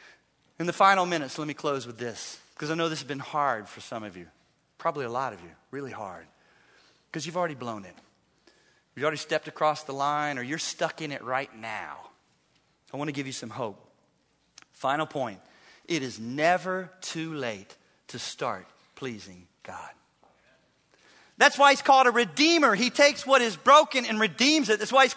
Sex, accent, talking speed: male, American, 190 wpm